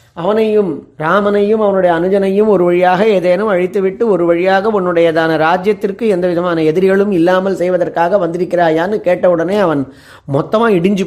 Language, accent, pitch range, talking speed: Tamil, native, 170-210 Hz, 120 wpm